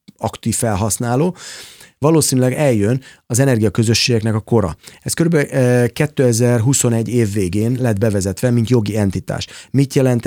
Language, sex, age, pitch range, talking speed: Hungarian, male, 30-49, 110-135 Hz, 115 wpm